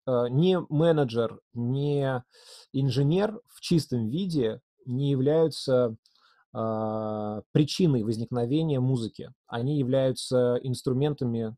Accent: native